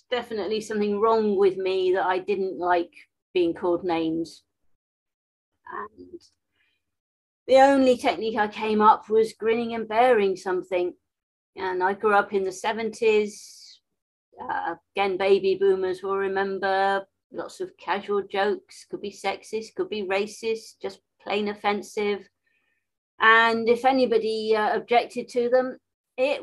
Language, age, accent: English, 40-59, British